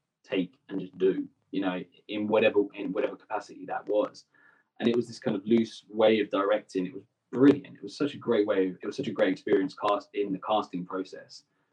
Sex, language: male, English